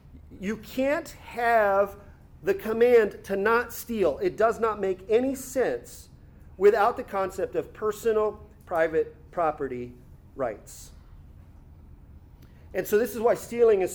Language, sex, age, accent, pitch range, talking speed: English, male, 40-59, American, 155-225 Hz, 125 wpm